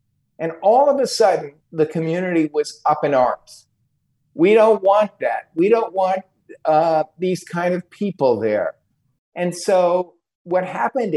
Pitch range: 130-190 Hz